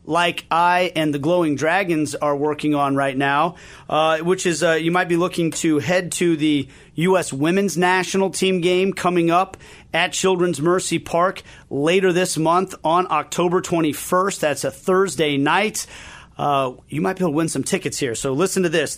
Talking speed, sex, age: 185 wpm, male, 40-59